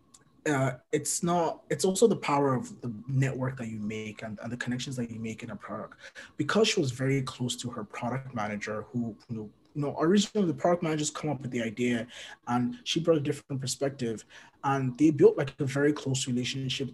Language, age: English, 20-39